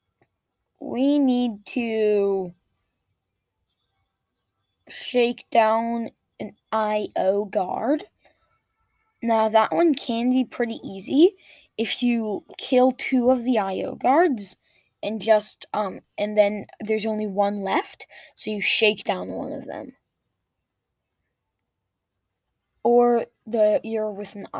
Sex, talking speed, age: female, 105 wpm, 10-29